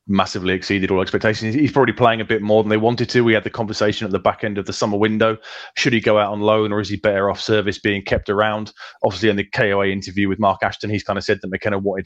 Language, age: English, 20-39